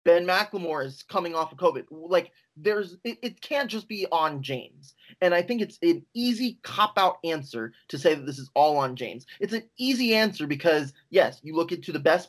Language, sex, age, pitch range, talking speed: English, male, 20-39, 140-180 Hz, 215 wpm